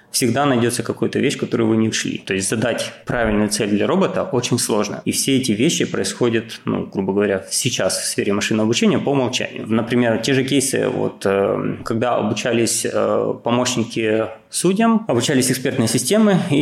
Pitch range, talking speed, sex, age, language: 110-130 Hz, 160 wpm, male, 20-39, Ukrainian